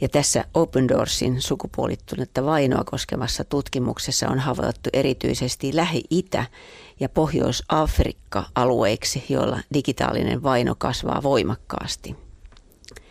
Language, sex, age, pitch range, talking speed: Finnish, female, 40-59, 120-145 Hz, 85 wpm